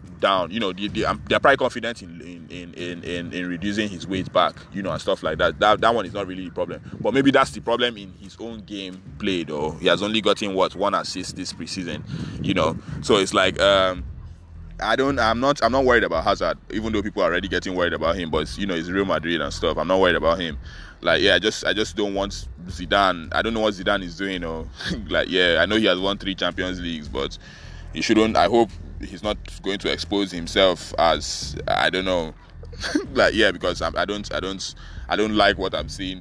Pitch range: 85-105 Hz